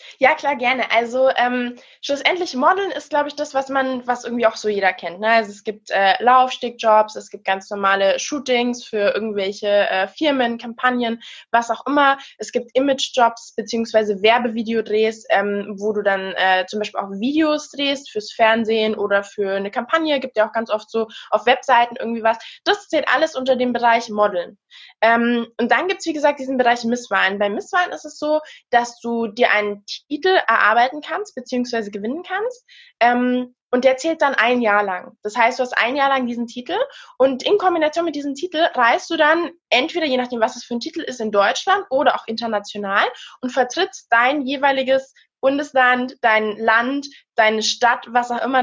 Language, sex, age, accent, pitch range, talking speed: German, female, 20-39, German, 225-290 Hz, 190 wpm